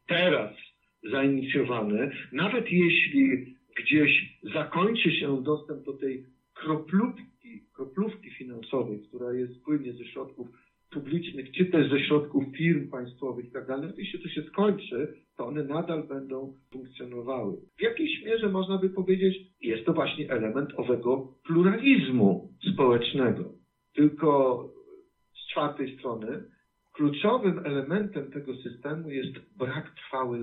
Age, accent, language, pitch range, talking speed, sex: 50-69, native, Polish, 125-160 Hz, 120 wpm, male